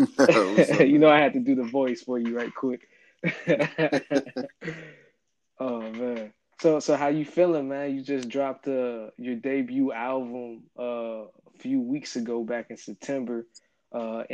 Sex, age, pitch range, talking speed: male, 20-39, 115-135 Hz, 150 wpm